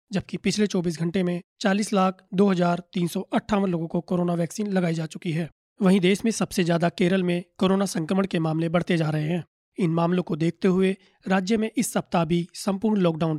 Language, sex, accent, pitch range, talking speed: Hindi, male, native, 175-200 Hz, 195 wpm